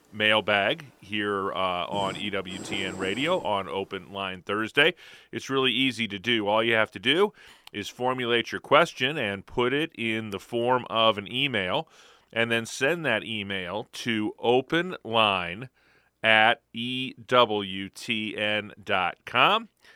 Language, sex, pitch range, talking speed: English, male, 100-120 Hz, 125 wpm